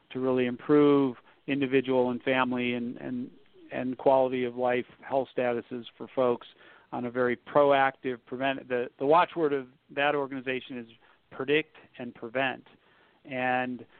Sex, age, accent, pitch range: male, 50-69, American, 125-145 Hz